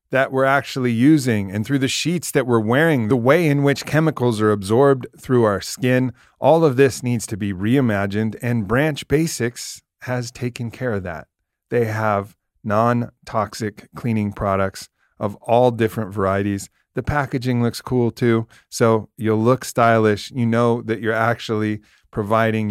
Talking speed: 160 wpm